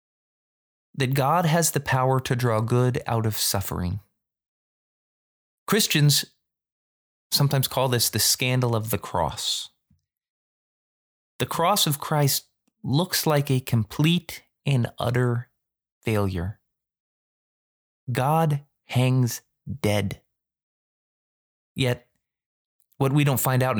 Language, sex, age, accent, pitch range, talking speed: English, male, 20-39, American, 105-150 Hz, 100 wpm